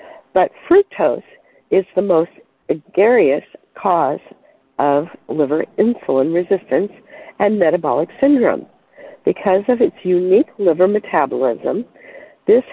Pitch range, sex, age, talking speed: 170-280 Hz, female, 60-79, 100 wpm